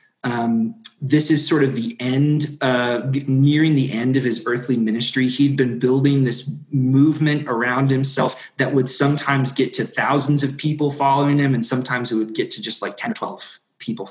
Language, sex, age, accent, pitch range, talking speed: English, male, 20-39, American, 130-150 Hz, 185 wpm